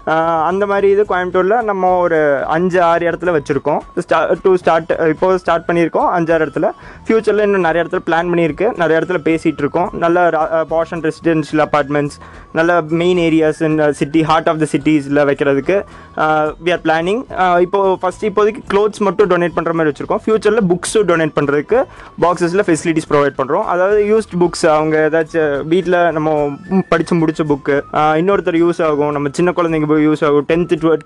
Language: Tamil